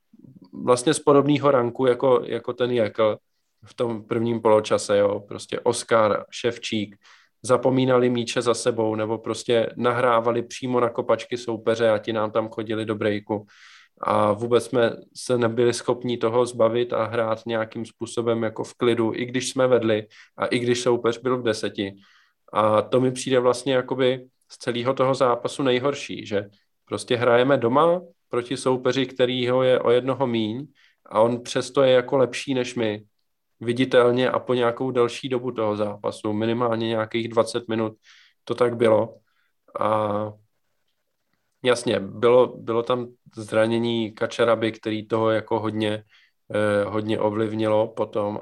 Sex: male